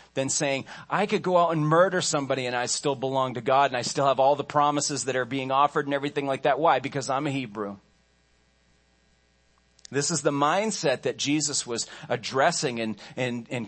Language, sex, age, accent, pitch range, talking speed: English, male, 40-59, American, 105-145 Hz, 195 wpm